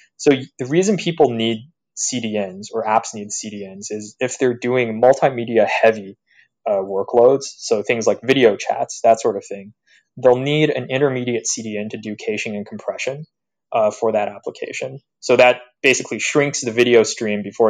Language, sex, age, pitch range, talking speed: English, male, 20-39, 105-130 Hz, 165 wpm